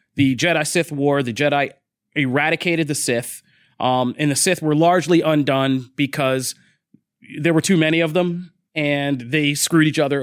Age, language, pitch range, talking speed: 30-49, English, 130-150 Hz, 160 wpm